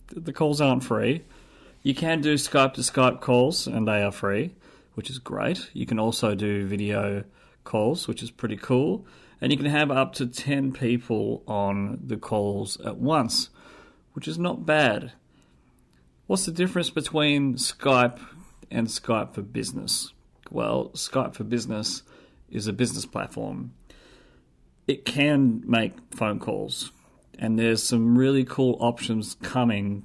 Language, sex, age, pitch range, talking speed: English, male, 40-59, 105-135 Hz, 150 wpm